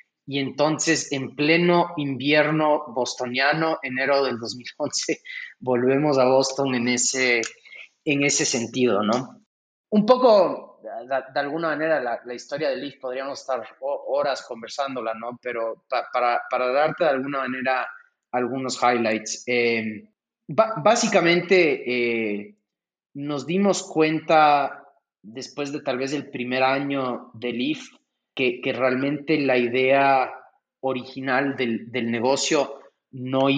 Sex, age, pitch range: male, 30-49, 125-150 Hz